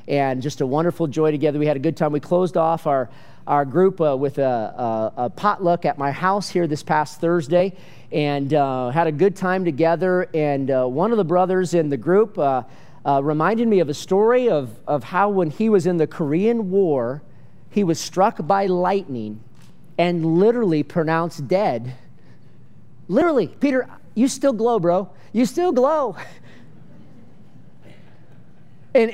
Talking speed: 165 wpm